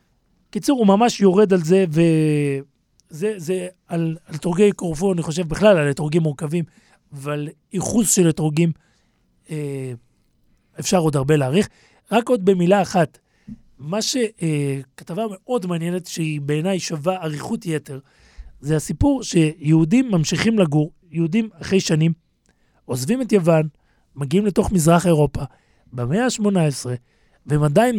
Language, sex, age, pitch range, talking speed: Hebrew, male, 40-59, 150-195 Hz, 125 wpm